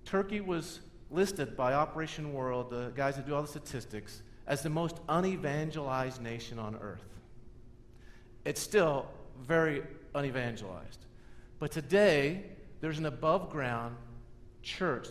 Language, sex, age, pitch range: English, male, 50-69, 120-155 Hz